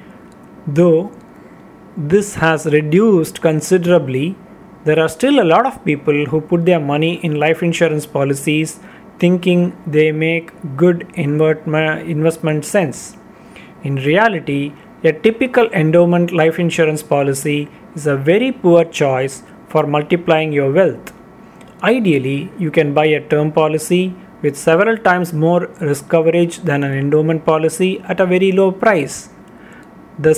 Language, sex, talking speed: English, male, 130 wpm